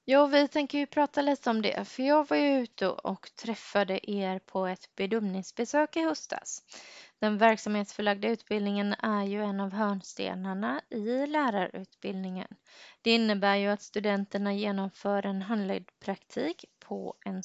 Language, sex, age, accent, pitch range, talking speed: Swedish, female, 20-39, native, 200-255 Hz, 145 wpm